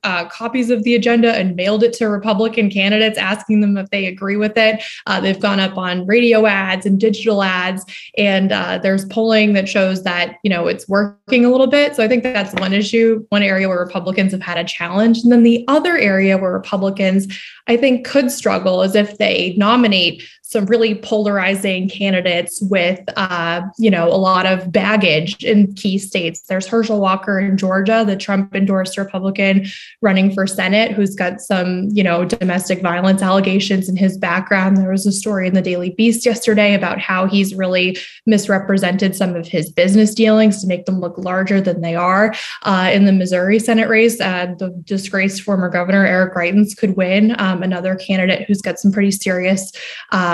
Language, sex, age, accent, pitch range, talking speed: English, female, 20-39, American, 185-215 Hz, 190 wpm